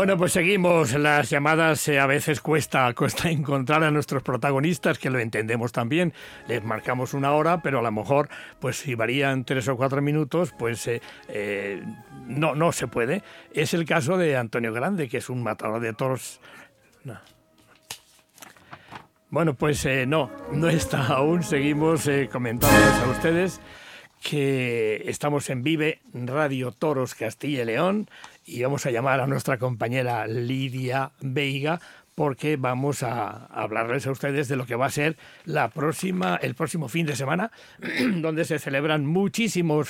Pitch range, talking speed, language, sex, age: 130-160 Hz, 160 wpm, Spanish, male, 60-79